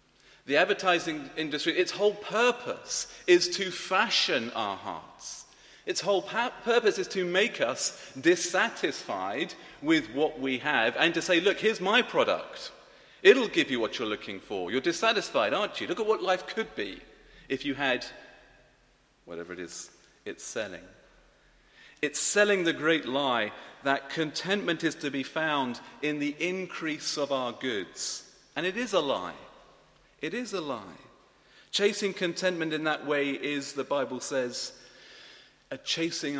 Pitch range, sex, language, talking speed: 130-200 Hz, male, English, 150 wpm